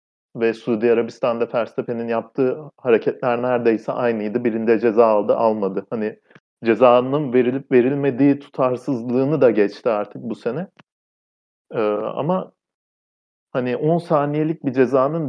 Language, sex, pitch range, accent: Turkish, male, 115-145 Hz, native